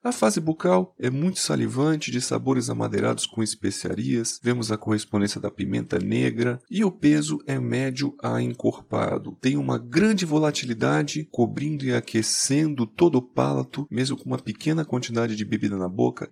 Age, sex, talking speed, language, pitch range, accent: 40-59, male, 160 wpm, Portuguese, 105-145 Hz, Brazilian